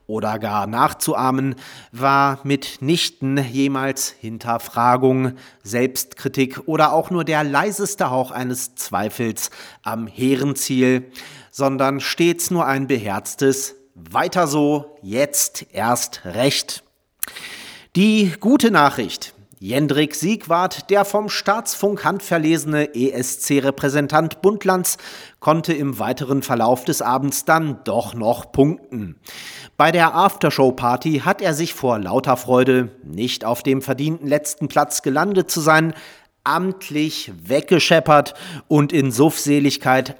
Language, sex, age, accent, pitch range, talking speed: German, male, 40-59, German, 125-155 Hz, 100 wpm